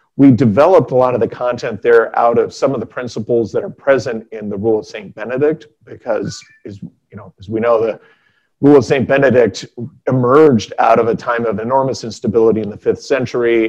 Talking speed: 205 wpm